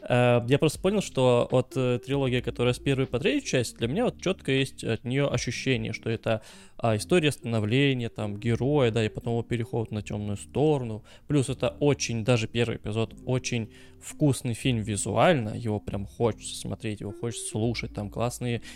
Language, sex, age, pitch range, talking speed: Russian, male, 20-39, 115-135 Hz, 170 wpm